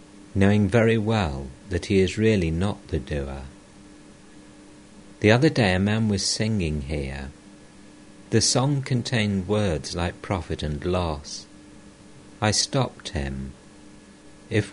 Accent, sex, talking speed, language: British, male, 120 wpm, English